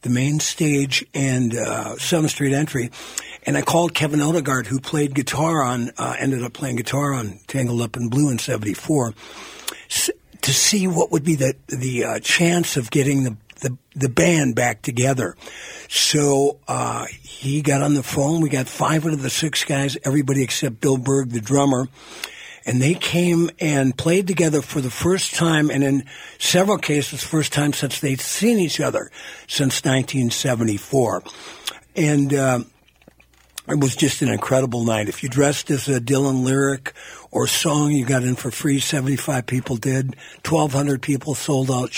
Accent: American